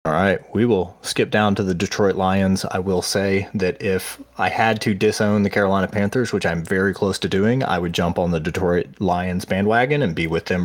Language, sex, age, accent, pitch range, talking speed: English, male, 30-49, American, 90-105 Hz, 225 wpm